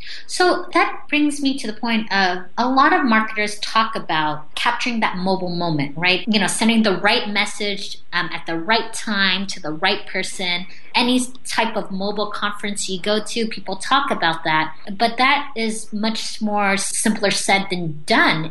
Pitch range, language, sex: 175-220 Hz, English, female